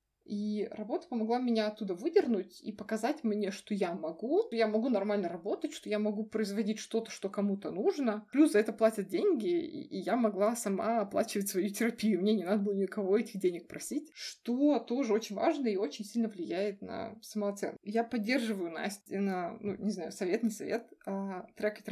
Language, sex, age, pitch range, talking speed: Russian, female, 20-39, 205-240 Hz, 180 wpm